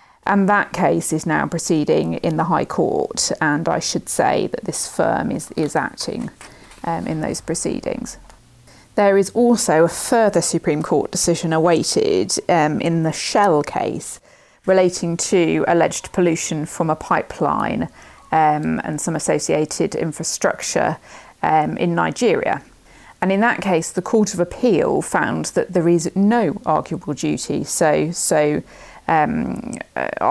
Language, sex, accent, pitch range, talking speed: English, female, British, 160-190 Hz, 145 wpm